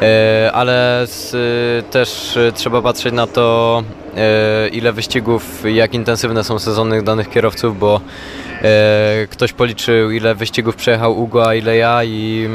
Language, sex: Polish, male